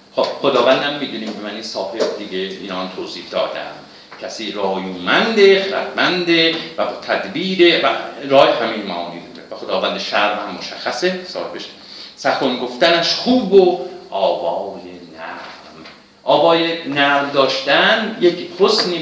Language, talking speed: Persian, 115 wpm